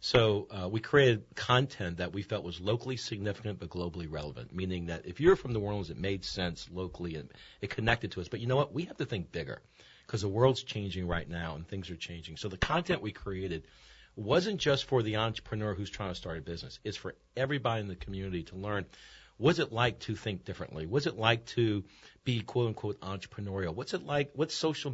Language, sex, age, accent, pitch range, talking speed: English, male, 50-69, American, 95-125 Hz, 220 wpm